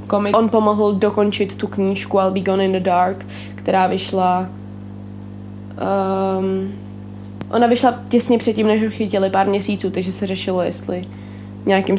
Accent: native